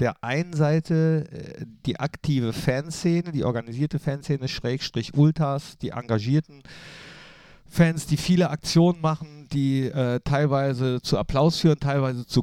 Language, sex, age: German, male, 50-69